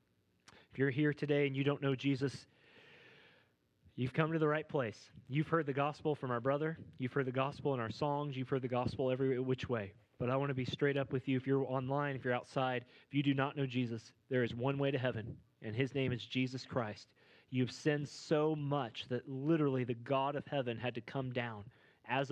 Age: 30-49